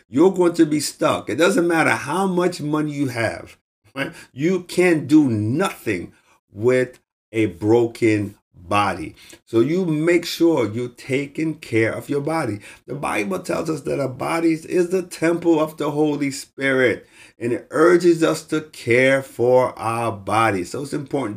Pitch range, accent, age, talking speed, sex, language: 115-160 Hz, American, 50-69, 160 wpm, male, English